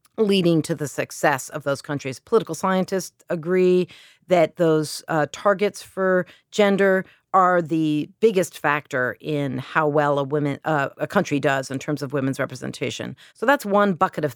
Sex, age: female, 40-59